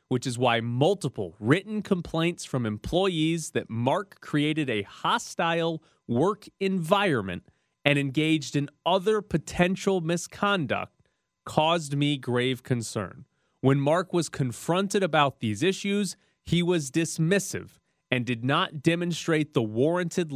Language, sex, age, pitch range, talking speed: English, male, 30-49, 130-180 Hz, 120 wpm